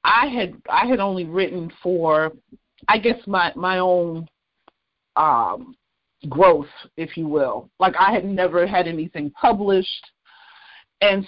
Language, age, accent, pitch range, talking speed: English, 50-69, American, 170-215 Hz, 135 wpm